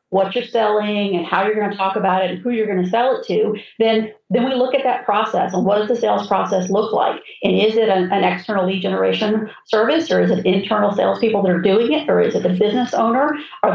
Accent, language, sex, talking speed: American, English, female, 260 wpm